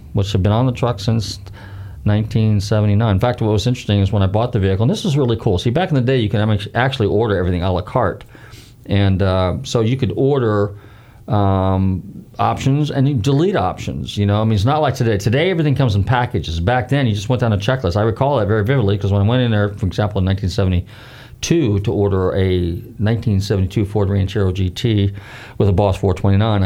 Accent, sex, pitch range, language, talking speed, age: American, male, 95-120 Hz, English, 220 wpm, 40-59